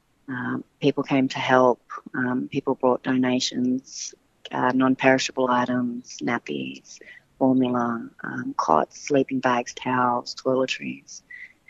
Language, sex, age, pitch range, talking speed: English, female, 30-49, 130-145 Hz, 105 wpm